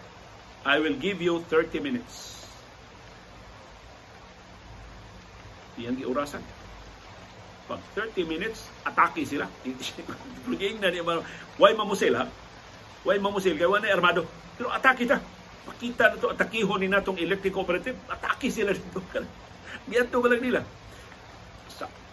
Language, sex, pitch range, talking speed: Filipino, male, 115-185 Hz, 130 wpm